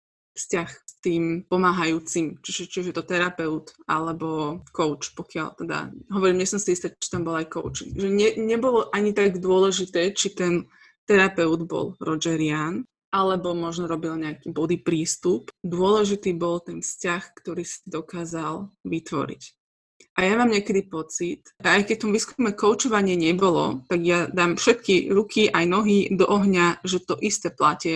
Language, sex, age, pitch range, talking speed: Slovak, female, 20-39, 170-200 Hz, 160 wpm